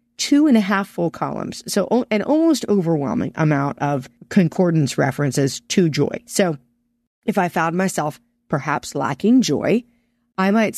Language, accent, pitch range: English, American, 140-185 Hz